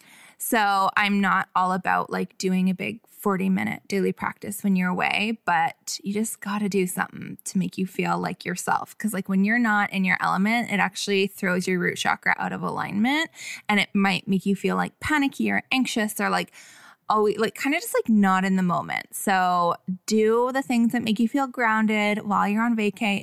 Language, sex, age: English, female, 20-39